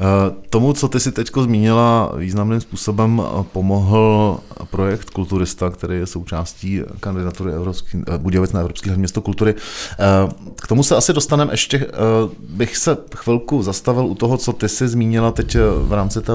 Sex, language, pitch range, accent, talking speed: male, Czech, 95-115 Hz, native, 150 wpm